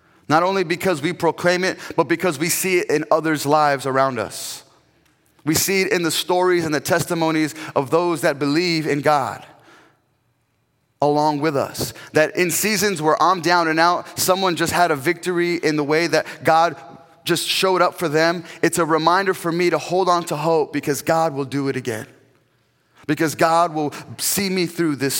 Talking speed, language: 190 wpm, English